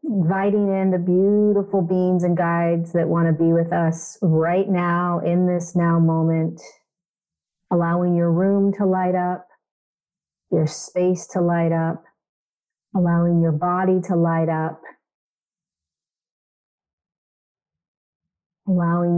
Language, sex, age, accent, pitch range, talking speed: English, female, 40-59, American, 165-185 Hz, 115 wpm